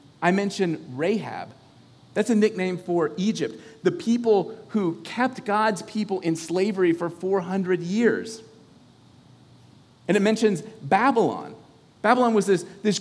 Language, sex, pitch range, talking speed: English, male, 155-215 Hz, 125 wpm